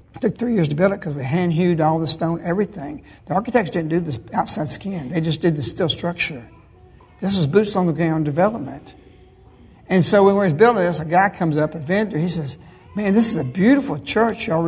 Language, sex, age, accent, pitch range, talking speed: English, male, 60-79, American, 155-200 Hz, 220 wpm